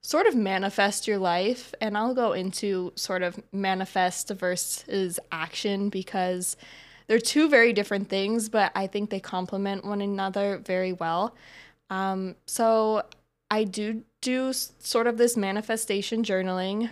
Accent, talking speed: American, 140 wpm